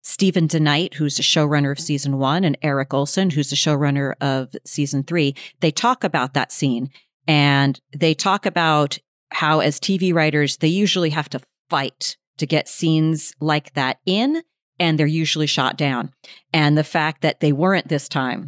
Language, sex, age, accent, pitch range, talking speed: English, female, 40-59, American, 145-180 Hz, 175 wpm